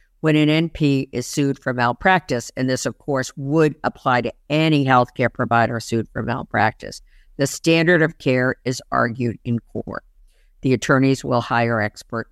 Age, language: 50-69, English